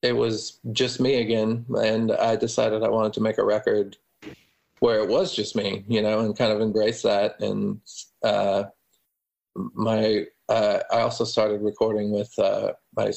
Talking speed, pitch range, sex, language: 170 wpm, 105-115 Hz, male, English